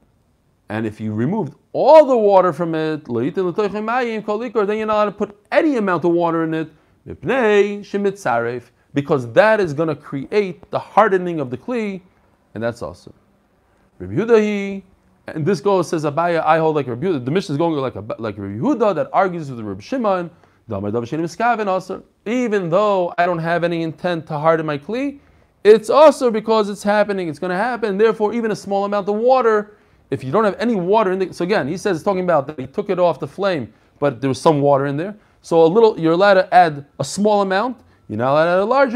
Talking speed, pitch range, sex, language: 205 wpm, 155-210 Hz, male, English